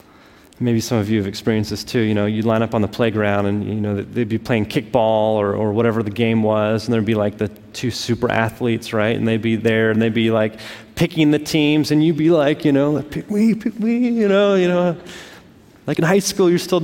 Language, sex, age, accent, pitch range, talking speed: English, male, 30-49, American, 115-150 Hz, 245 wpm